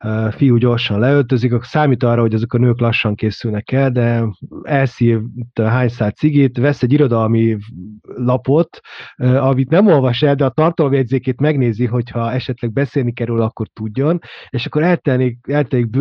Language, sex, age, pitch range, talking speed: Hungarian, male, 30-49, 115-140 Hz, 150 wpm